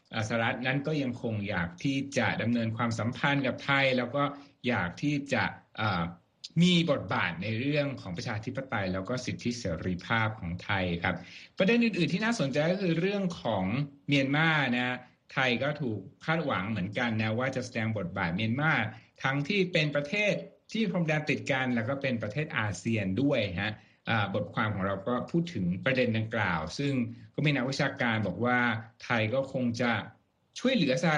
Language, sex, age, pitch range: Thai, male, 60-79, 110-145 Hz